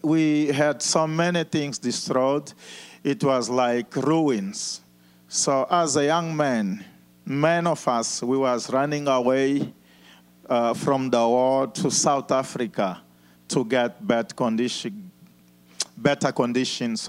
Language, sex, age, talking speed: English, male, 40-59, 120 wpm